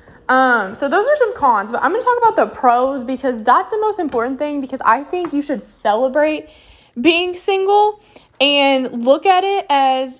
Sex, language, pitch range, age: female, English, 215-285 Hz, 10-29